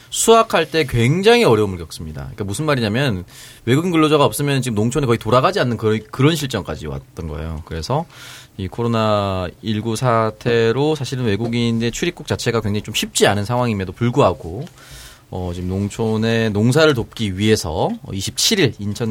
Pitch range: 100-145 Hz